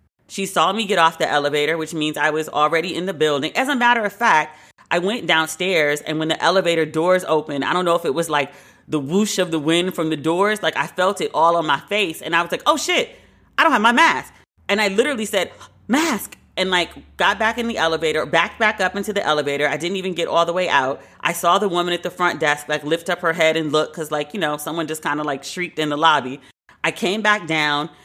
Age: 30-49